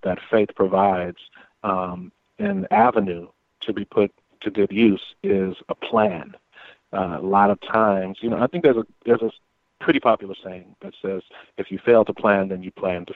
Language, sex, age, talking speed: English, male, 40-59, 185 wpm